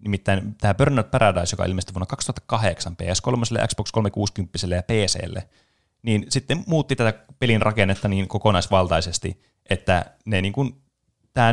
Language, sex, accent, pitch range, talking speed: Finnish, male, native, 95-120 Hz, 135 wpm